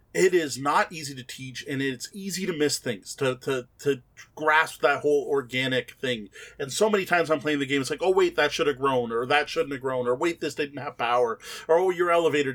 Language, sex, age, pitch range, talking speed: English, male, 30-49, 130-165 Hz, 245 wpm